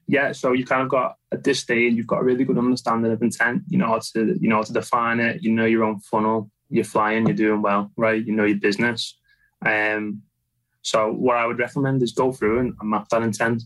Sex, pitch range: male, 110-125 Hz